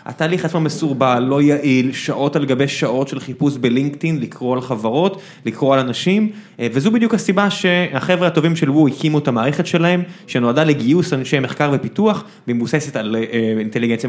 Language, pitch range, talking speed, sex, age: Hebrew, 130-180 Hz, 160 wpm, male, 20-39